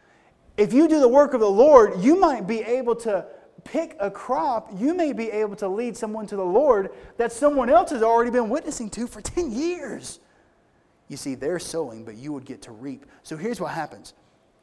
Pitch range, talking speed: 150-230 Hz, 210 wpm